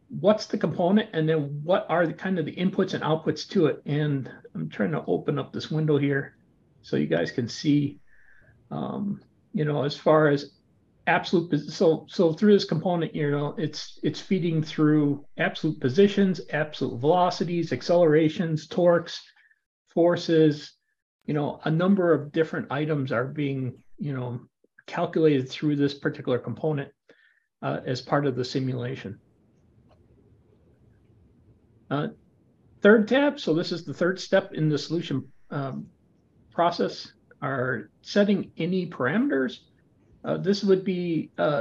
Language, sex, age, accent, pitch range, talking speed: English, male, 50-69, American, 140-175 Hz, 145 wpm